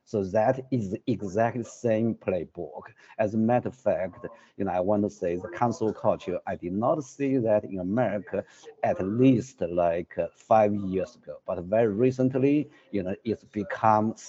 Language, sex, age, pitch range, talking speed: English, male, 60-79, 105-125 Hz, 175 wpm